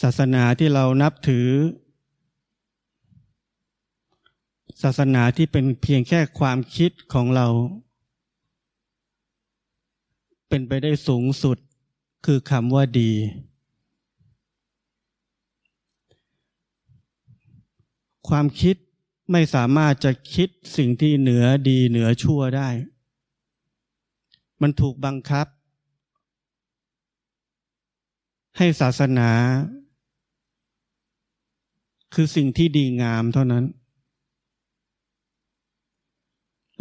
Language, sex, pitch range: Thai, male, 125-150 Hz